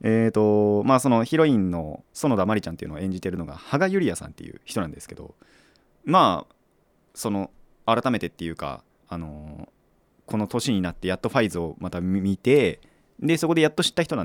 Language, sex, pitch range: Japanese, male, 90-130 Hz